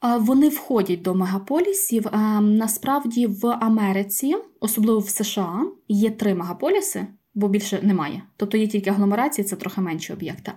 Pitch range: 200-235 Hz